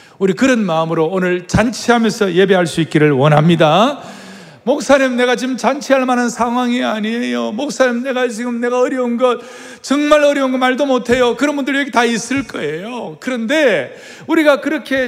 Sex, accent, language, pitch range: male, native, Korean, 190-255 Hz